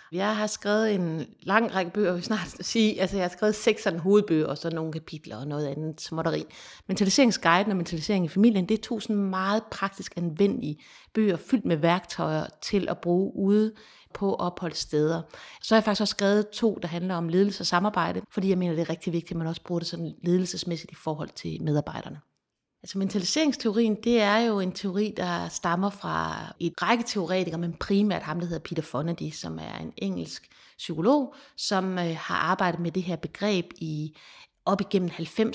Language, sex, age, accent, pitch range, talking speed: Danish, female, 30-49, native, 170-205 Hz, 195 wpm